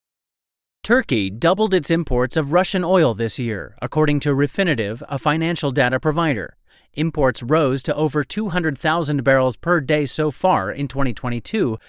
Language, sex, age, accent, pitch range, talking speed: English, male, 30-49, American, 125-165 Hz, 140 wpm